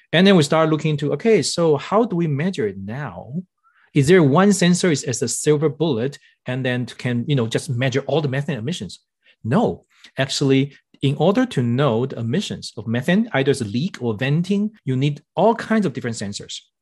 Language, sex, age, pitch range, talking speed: English, male, 40-59, 130-185 Hz, 200 wpm